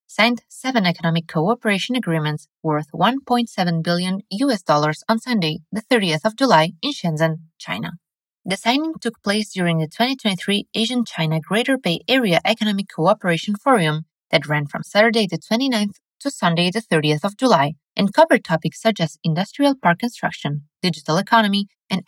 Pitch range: 165-230 Hz